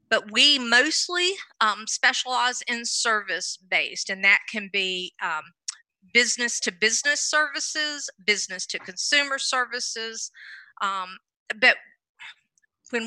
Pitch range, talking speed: 190-245 Hz, 90 wpm